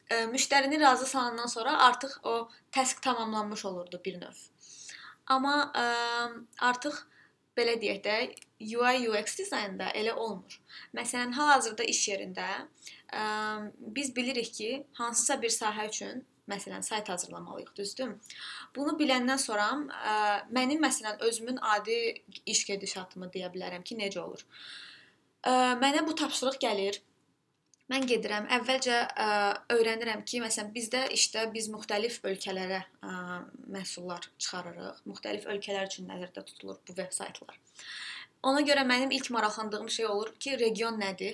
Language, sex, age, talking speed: Turkish, female, 20-39, 130 wpm